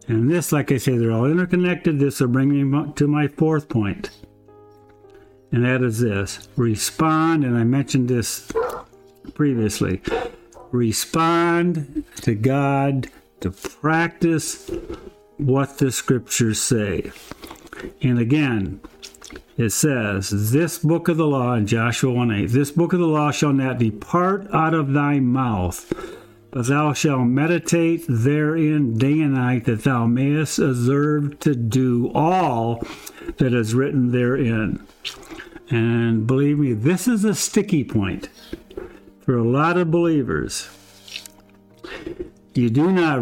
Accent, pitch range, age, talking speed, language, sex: American, 120-155 Hz, 60-79, 130 wpm, English, male